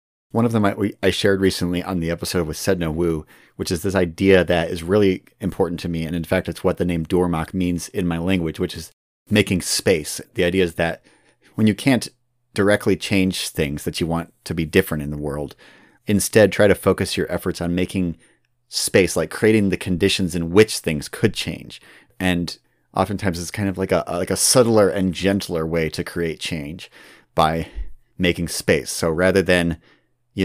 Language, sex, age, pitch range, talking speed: English, male, 30-49, 80-95 Hz, 195 wpm